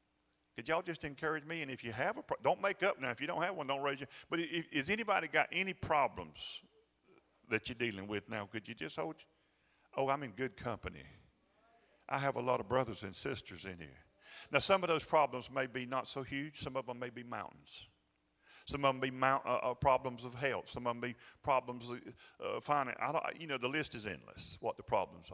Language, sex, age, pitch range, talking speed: English, male, 40-59, 100-135 Hz, 235 wpm